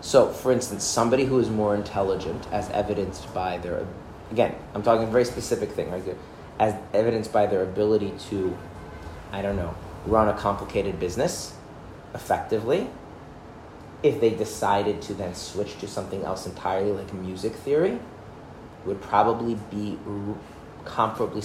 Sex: male